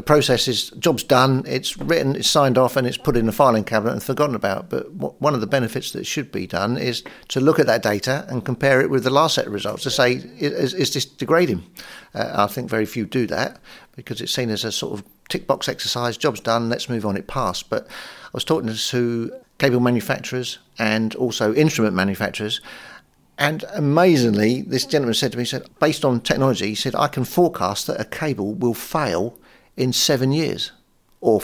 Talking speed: 210 wpm